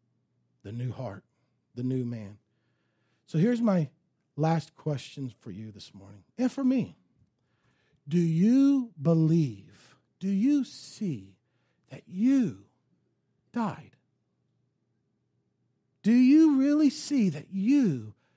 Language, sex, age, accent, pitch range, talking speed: English, male, 50-69, American, 145-220 Hz, 110 wpm